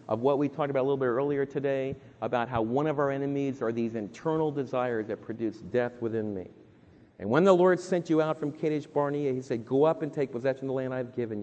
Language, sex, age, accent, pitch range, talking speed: English, male, 40-59, American, 115-160 Hz, 250 wpm